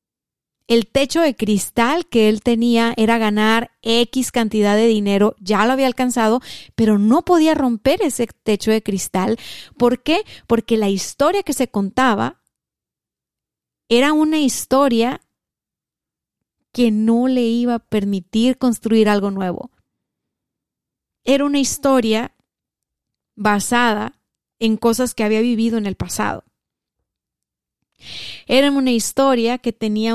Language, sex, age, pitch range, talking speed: Spanish, female, 30-49, 215-260 Hz, 125 wpm